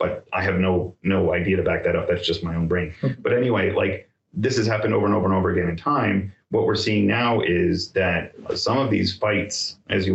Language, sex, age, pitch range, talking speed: English, male, 30-49, 90-105 Hz, 240 wpm